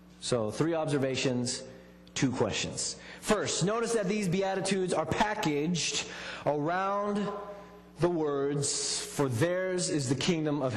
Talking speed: 115 wpm